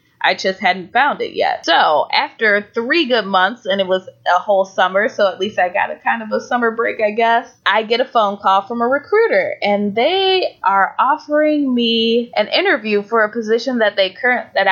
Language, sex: English, female